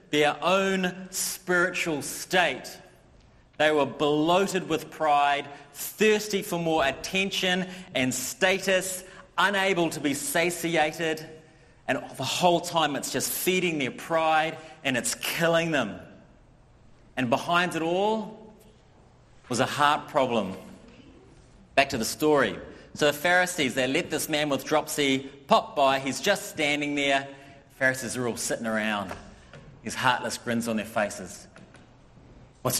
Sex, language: male, English